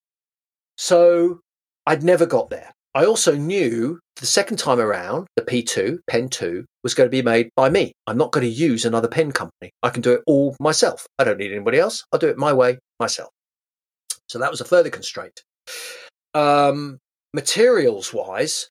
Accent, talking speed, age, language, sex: British, 180 wpm, 40-59, English, male